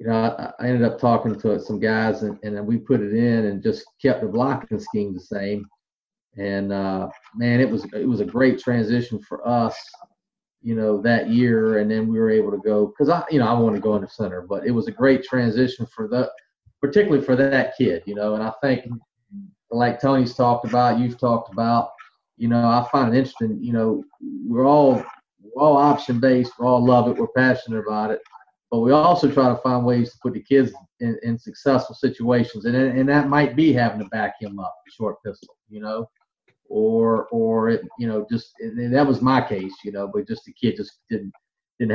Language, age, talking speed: English, 40-59, 220 wpm